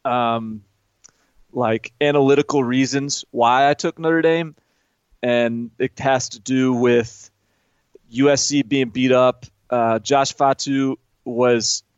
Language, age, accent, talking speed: English, 30-49, American, 115 wpm